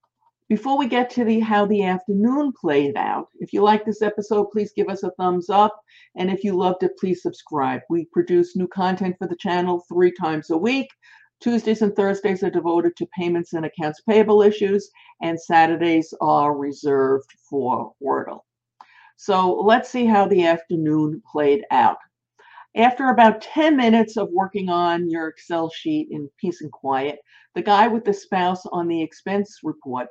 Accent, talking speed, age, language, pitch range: American, 175 wpm, 50-69, English, 165-215 Hz